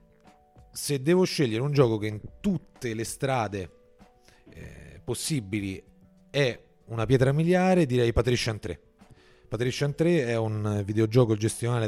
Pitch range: 110-130 Hz